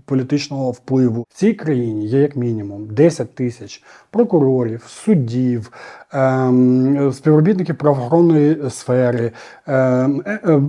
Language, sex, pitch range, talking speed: Ukrainian, male, 125-160 Hz, 100 wpm